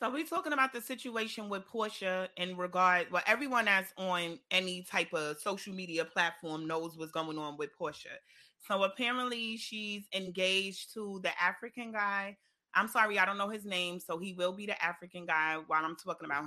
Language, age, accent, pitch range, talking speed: English, 30-49, American, 180-220 Hz, 190 wpm